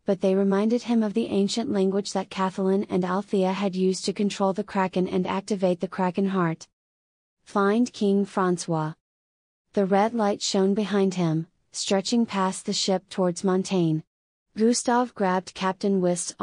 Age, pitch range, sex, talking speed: 30-49, 170-200 Hz, female, 155 wpm